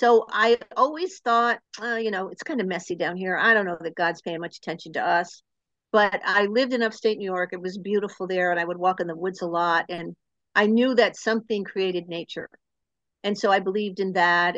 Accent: American